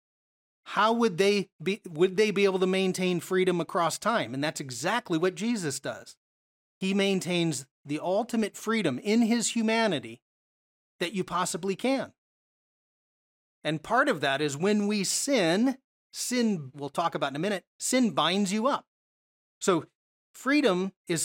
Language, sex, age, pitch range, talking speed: English, male, 30-49, 155-205 Hz, 150 wpm